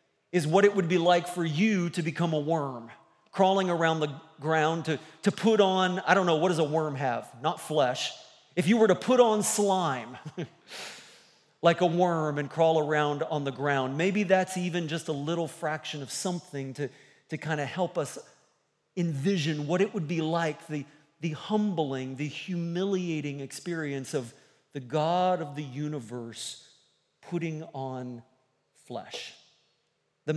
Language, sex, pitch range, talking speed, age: English, male, 145-190 Hz, 160 wpm, 40-59